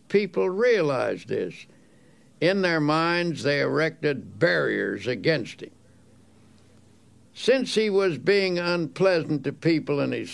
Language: Thai